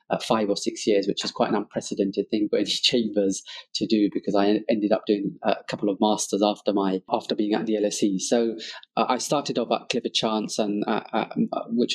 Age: 20-39